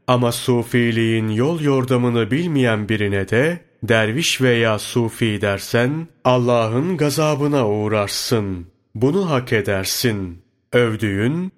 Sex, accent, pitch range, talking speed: male, native, 110-135 Hz, 95 wpm